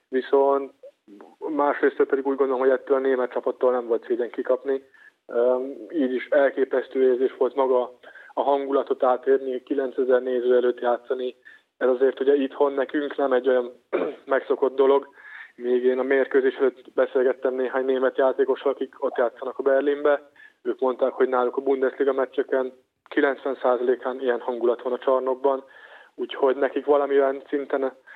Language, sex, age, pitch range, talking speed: Hungarian, male, 20-39, 125-145 Hz, 145 wpm